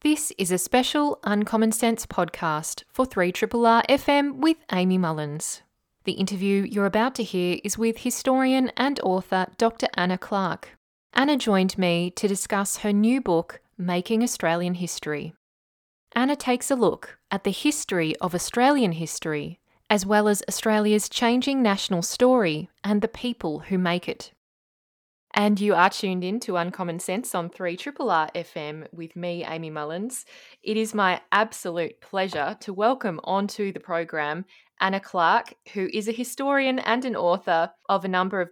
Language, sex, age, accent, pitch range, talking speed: English, female, 20-39, Australian, 170-220 Hz, 155 wpm